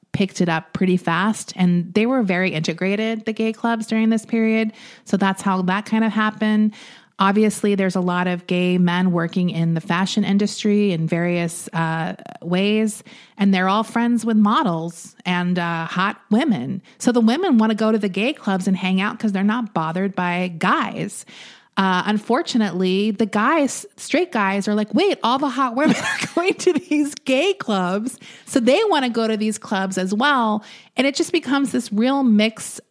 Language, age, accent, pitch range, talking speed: English, 30-49, American, 175-225 Hz, 190 wpm